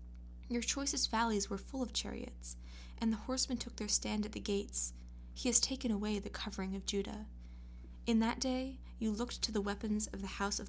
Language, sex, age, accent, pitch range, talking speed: English, female, 20-39, American, 175-225 Hz, 200 wpm